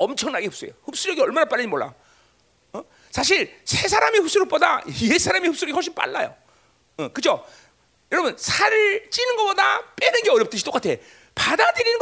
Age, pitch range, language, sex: 40-59, 285-455 Hz, Korean, male